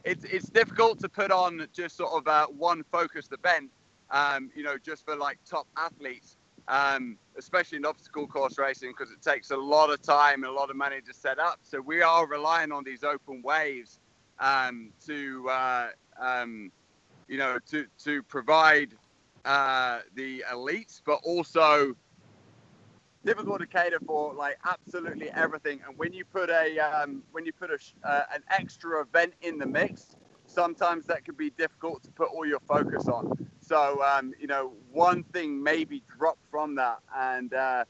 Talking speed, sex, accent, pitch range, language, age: 175 wpm, male, British, 135-170 Hz, English, 20-39